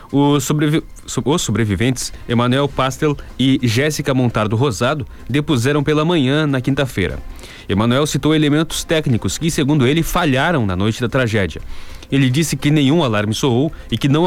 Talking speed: 150 wpm